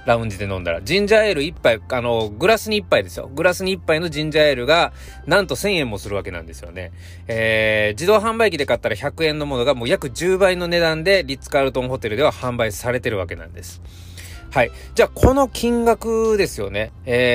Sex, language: male, Japanese